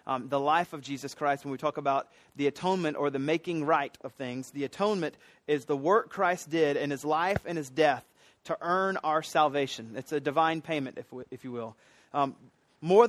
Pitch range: 150-195 Hz